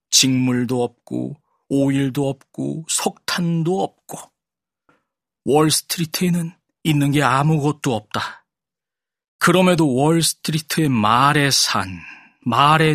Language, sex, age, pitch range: Korean, male, 40-59, 110-145 Hz